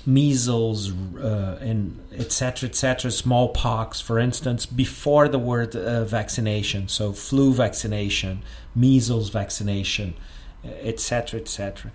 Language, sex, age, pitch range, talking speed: English, male, 40-59, 110-135 Hz, 100 wpm